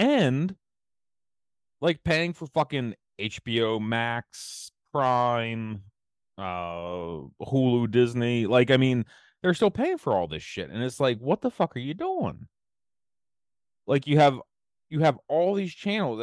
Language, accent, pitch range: English, American, 85-125 Hz